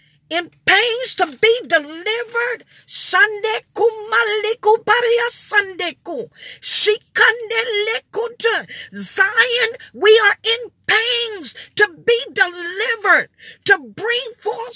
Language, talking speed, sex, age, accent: English, 65 wpm, female, 40-59, American